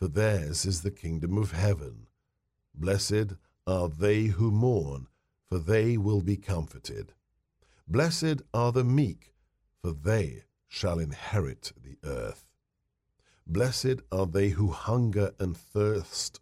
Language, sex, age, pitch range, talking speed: English, male, 50-69, 80-105 Hz, 125 wpm